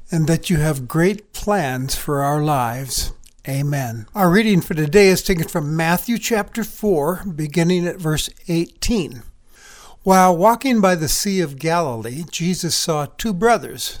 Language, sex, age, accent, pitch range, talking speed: English, male, 60-79, American, 150-200 Hz, 150 wpm